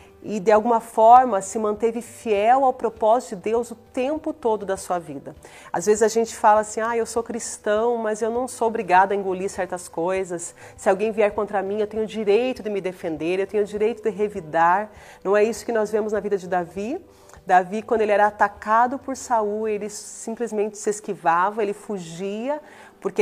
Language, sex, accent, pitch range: Portuguese, female, Brazilian, 195-230 Hz